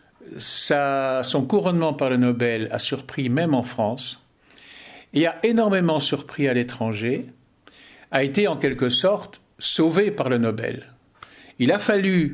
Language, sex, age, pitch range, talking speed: French, male, 60-79, 120-180 Hz, 135 wpm